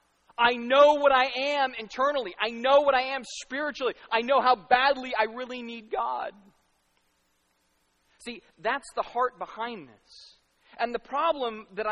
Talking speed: 150 wpm